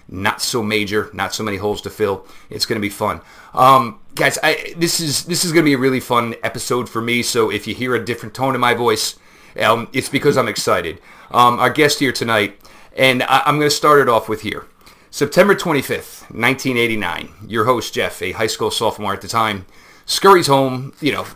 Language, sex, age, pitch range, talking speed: English, male, 40-59, 105-135 Hz, 215 wpm